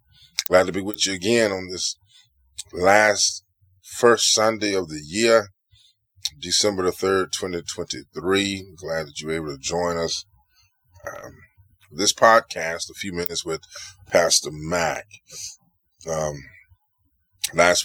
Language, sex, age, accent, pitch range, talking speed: English, male, 20-39, American, 80-95 Hz, 125 wpm